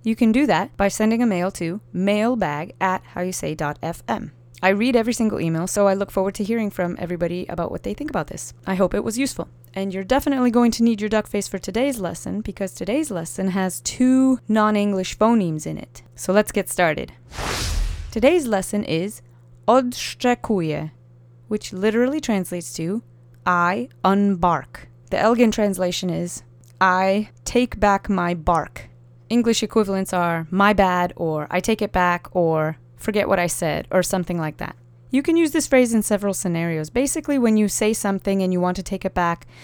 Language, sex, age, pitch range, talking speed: English, female, 20-39, 170-210 Hz, 180 wpm